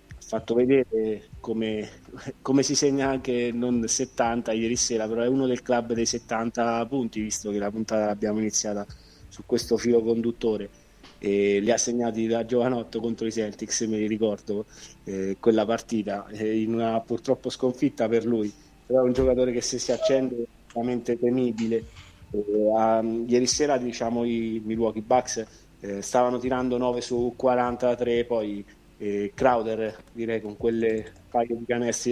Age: 20-39